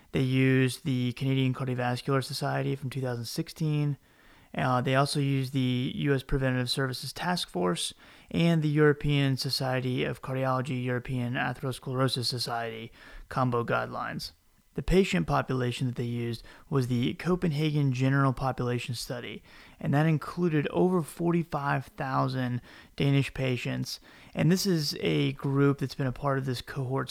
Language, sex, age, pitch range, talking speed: English, male, 30-49, 125-145 Hz, 135 wpm